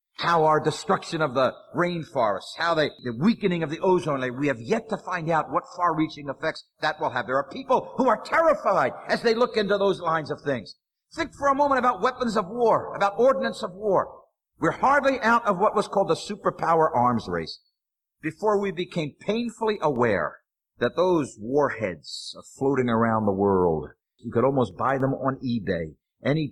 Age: 50-69